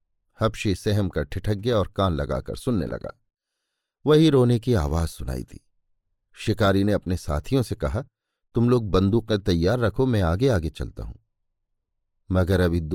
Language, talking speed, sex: Hindi, 160 wpm, male